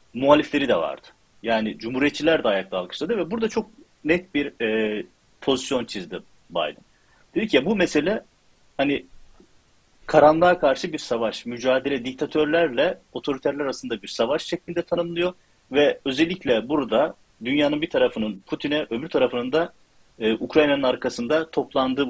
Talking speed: 135 wpm